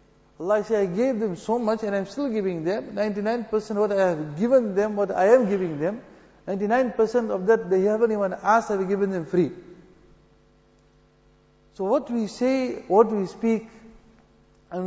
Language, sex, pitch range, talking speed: English, male, 175-215 Hz, 170 wpm